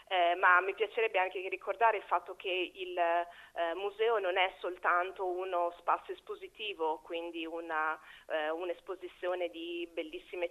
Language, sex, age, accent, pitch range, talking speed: Italian, female, 30-49, native, 170-195 Hz, 135 wpm